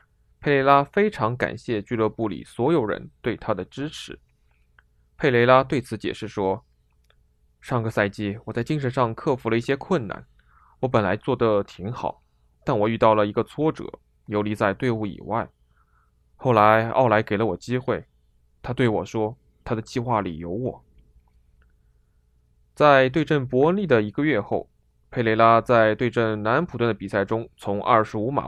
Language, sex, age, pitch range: Chinese, male, 20-39, 80-125 Hz